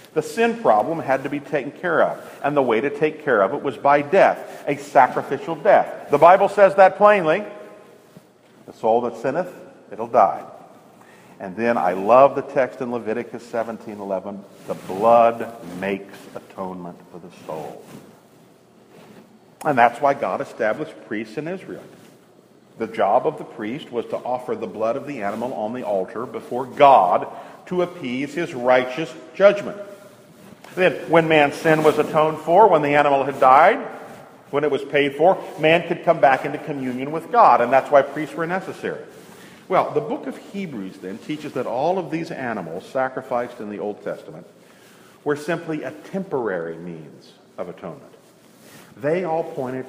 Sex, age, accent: male, 50-69, American